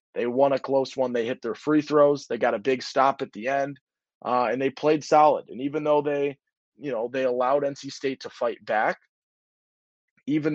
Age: 20-39